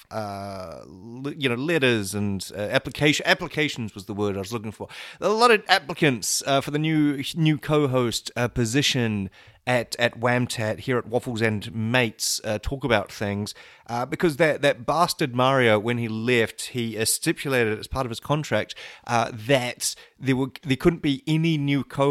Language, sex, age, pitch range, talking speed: English, male, 30-49, 110-145 Hz, 180 wpm